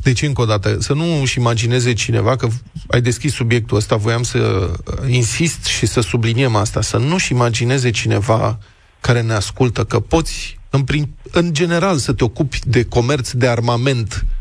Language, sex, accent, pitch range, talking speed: Romanian, male, native, 115-155 Hz, 170 wpm